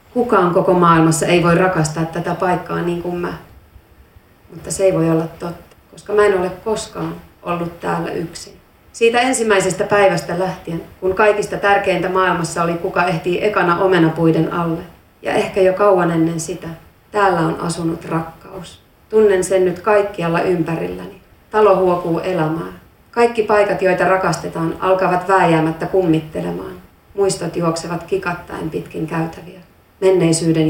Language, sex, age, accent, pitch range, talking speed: Finnish, female, 30-49, native, 165-190 Hz, 135 wpm